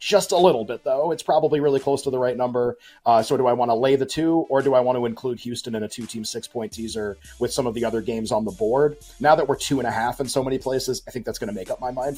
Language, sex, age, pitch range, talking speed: English, male, 30-49, 115-135 Hz, 305 wpm